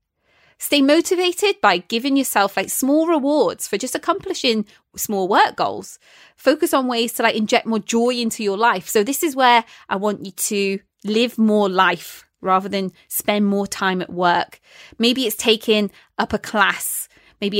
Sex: female